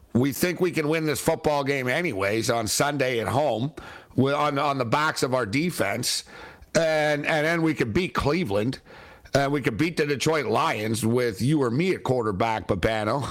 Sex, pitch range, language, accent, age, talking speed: male, 130-170 Hz, English, American, 50-69, 185 wpm